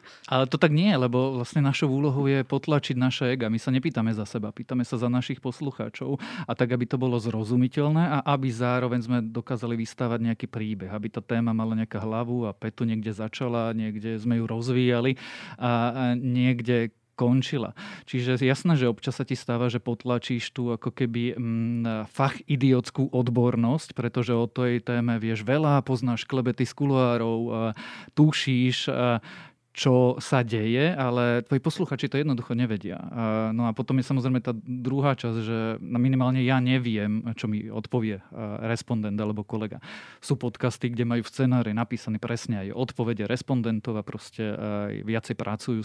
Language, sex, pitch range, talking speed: Slovak, male, 115-130 Hz, 160 wpm